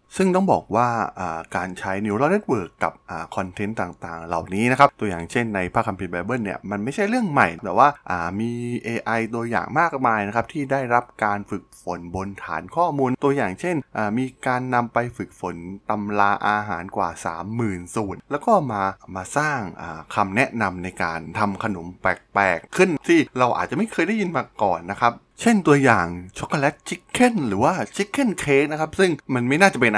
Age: 20-39